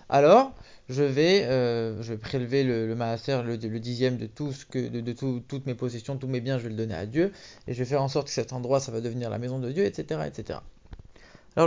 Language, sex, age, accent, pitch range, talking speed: English, male, 20-39, French, 125-175 Hz, 260 wpm